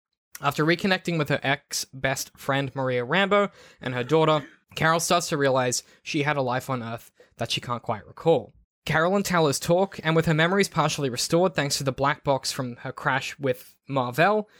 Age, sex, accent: 10-29, male, Australian